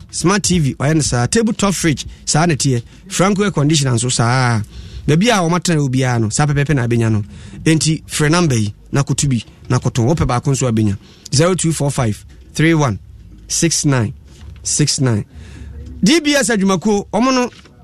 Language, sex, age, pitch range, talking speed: English, male, 30-49, 125-195 Hz, 120 wpm